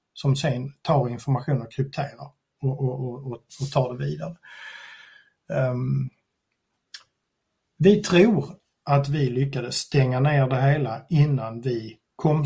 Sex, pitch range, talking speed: male, 130-160 Hz, 125 wpm